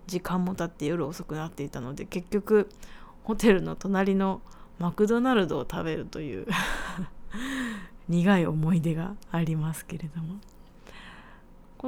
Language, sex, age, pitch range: Japanese, female, 20-39, 165-215 Hz